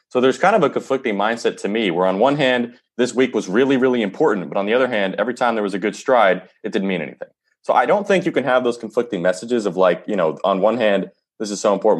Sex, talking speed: male, 280 wpm